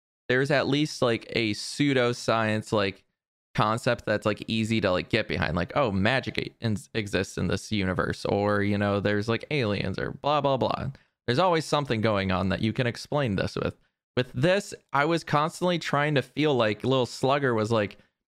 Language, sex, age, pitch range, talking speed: English, male, 20-39, 100-125 Hz, 185 wpm